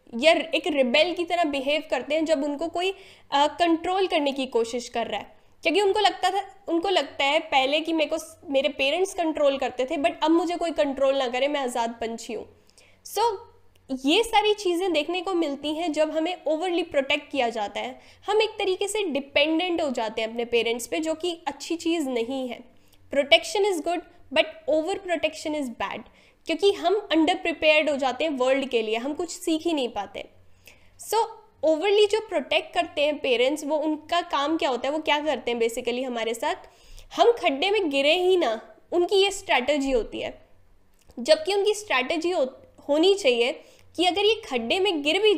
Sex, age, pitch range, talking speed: female, 10-29, 280-370 Hz, 195 wpm